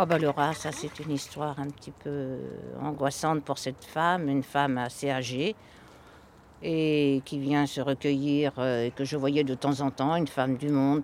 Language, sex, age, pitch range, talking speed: French, female, 60-79, 140-195 Hz, 195 wpm